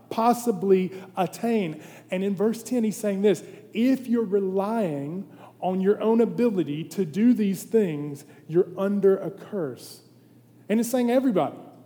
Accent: American